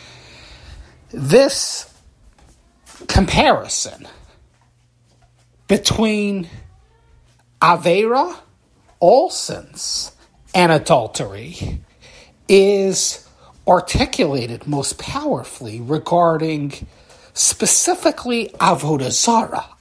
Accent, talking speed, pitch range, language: American, 40 wpm, 185-230 Hz, English